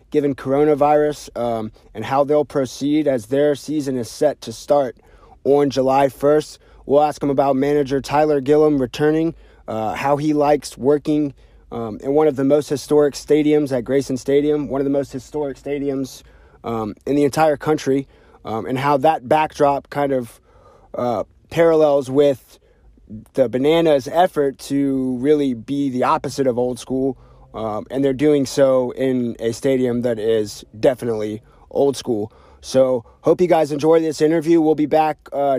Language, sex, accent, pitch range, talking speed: English, male, American, 125-145 Hz, 165 wpm